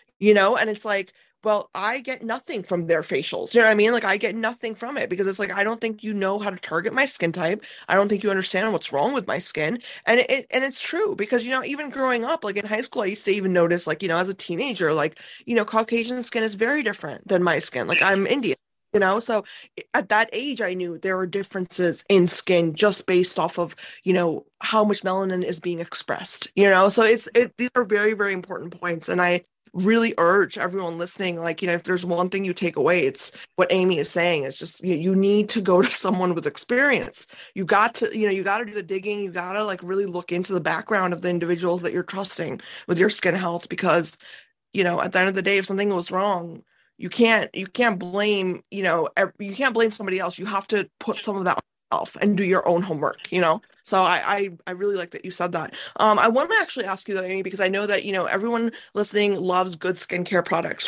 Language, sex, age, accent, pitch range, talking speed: English, female, 20-39, American, 180-220 Hz, 250 wpm